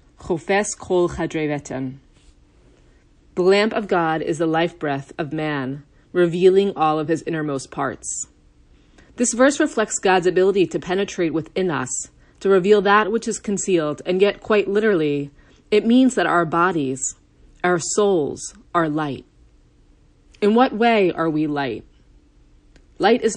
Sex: female